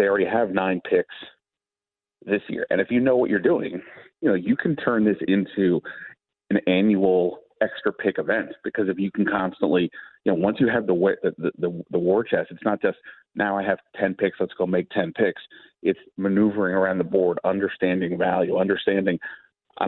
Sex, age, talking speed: male, 40-59, 195 wpm